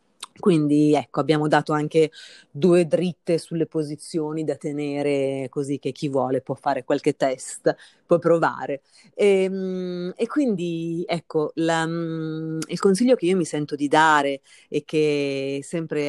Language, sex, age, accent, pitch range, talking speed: Italian, female, 30-49, native, 150-180 Hz, 135 wpm